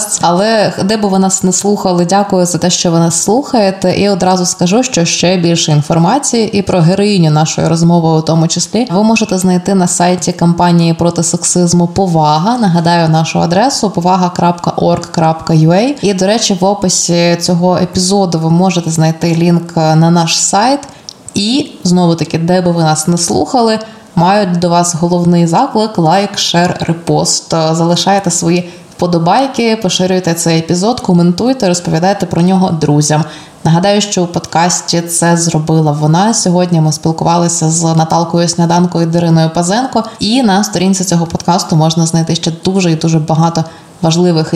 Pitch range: 165-190 Hz